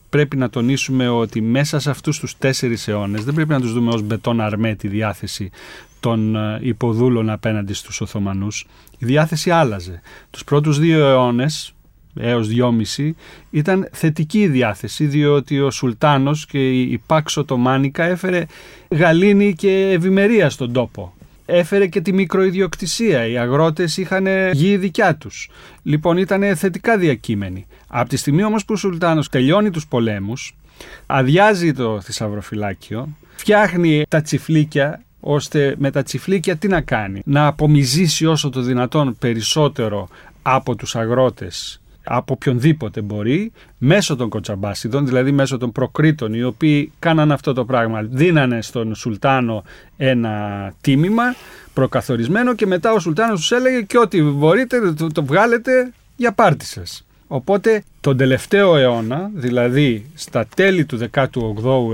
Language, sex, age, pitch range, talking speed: Greek, male, 30-49, 115-165 Hz, 140 wpm